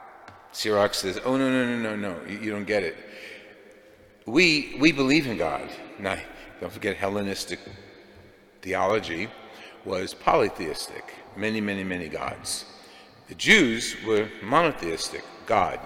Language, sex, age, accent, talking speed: English, male, 60-79, American, 130 wpm